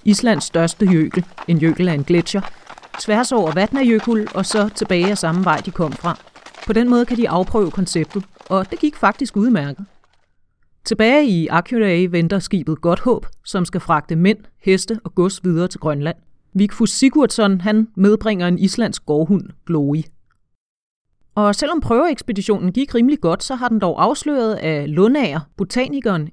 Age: 30-49